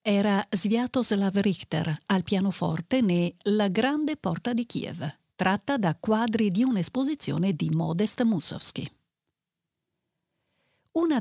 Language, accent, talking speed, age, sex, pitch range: Italian, native, 105 wpm, 50-69, female, 180-240 Hz